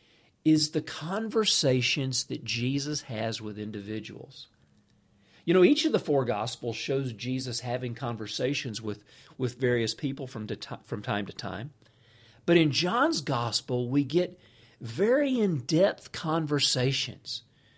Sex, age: male, 50-69